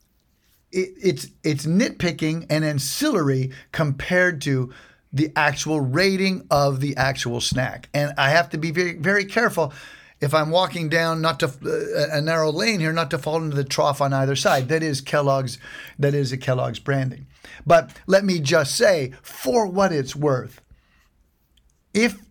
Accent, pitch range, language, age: American, 135-175 Hz, English, 50-69